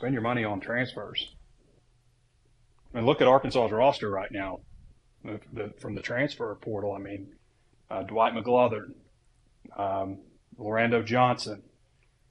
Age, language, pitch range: 40-59, English, 110-125 Hz